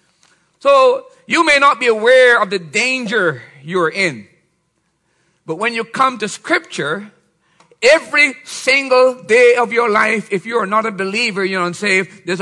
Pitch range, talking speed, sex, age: 170-230 Hz, 155 wpm, male, 50-69